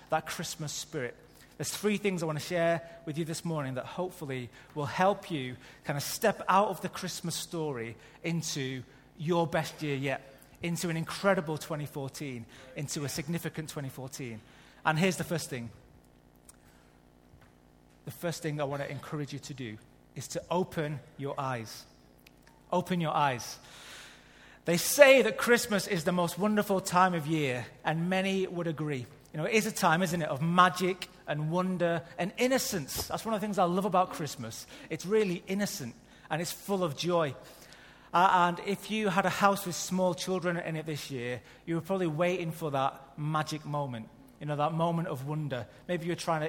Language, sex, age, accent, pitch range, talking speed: English, male, 30-49, British, 140-180 Hz, 180 wpm